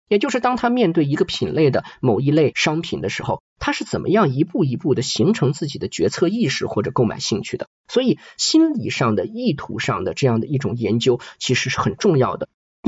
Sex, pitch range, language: male, 125-180 Hz, Chinese